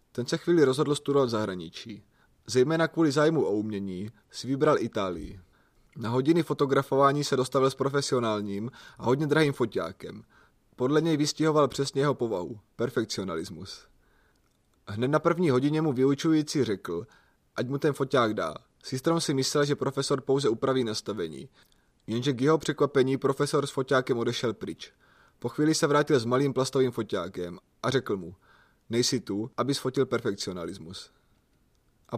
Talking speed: 145 wpm